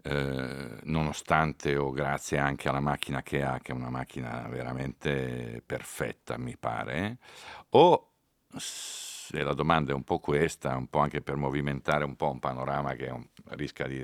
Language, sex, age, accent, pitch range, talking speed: Italian, male, 50-69, native, 65-85 Hz, 160 wpm